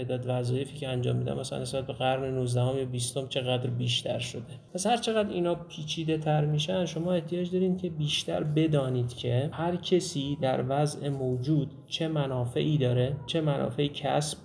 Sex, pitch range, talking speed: male, 125-155 Hz, 170 wpm